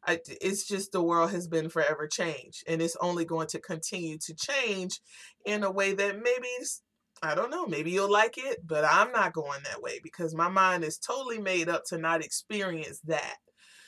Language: English